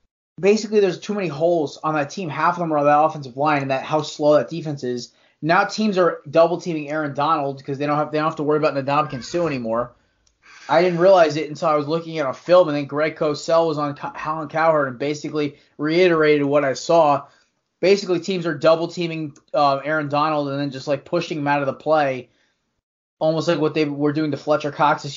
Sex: male